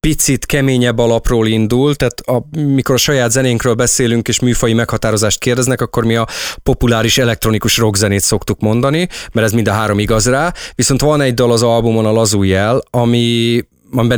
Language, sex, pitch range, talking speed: Hungarian, male, 110-135 Hz, 170 wpm